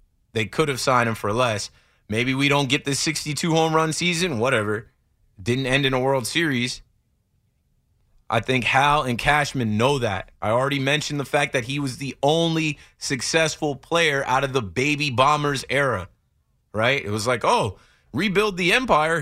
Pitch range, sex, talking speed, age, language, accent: 115-170 Hz, male, 175 wpm, 30-49, English, American